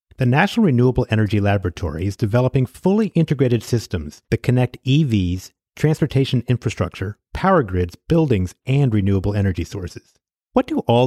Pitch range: 100-150 Hz